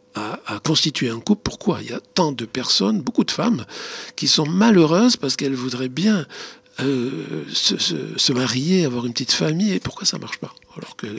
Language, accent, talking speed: French, French, 205 wpm